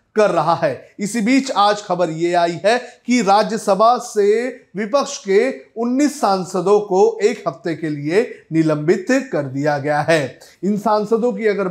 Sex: male